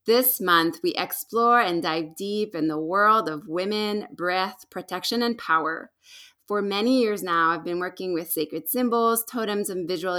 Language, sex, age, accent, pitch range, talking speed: English, female, 20-39, American, 170-215 Hz, 170 wpm